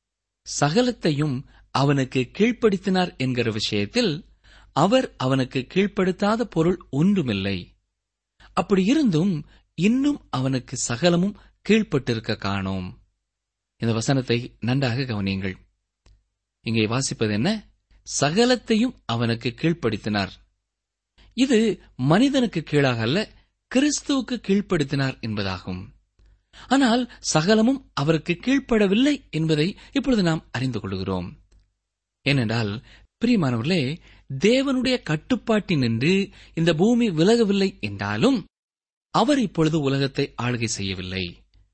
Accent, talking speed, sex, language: native, 80 wpm, male, Tamil